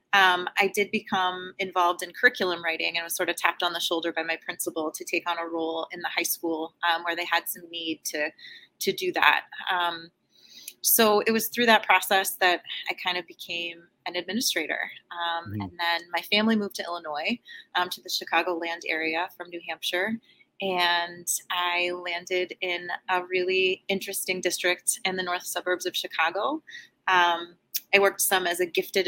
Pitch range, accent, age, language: 170-195 Hz, American, 30-49, English